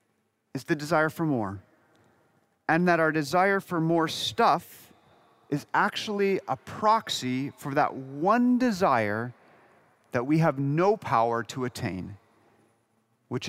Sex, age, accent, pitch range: male, 40-59, American, 115-170 Hz